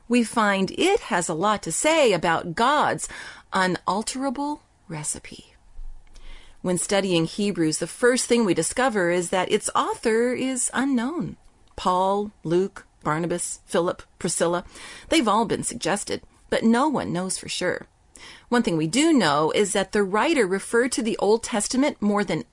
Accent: American